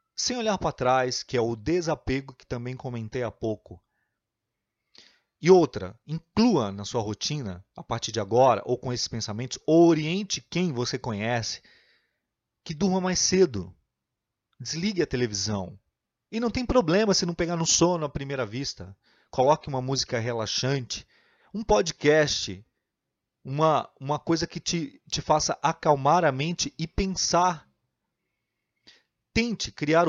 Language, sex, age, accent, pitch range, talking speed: Portuguese, male, 30-49, Brazilian, 120-165 Hz, 140 wpm